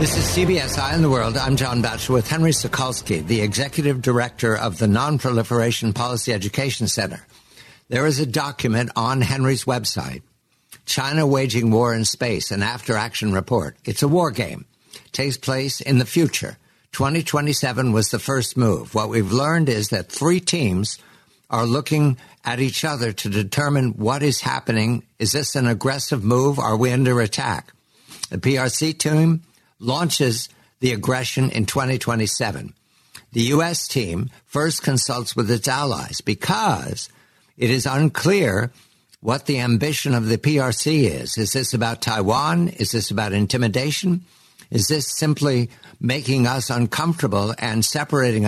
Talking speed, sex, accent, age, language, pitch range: 150 wpm, male, American, 60-79, English, 115-140 Hz